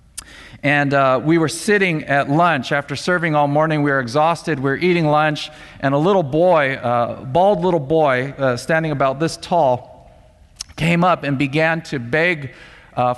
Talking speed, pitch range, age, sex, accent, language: 180 wpm, 130-170 Hz, 50-69, male, American, English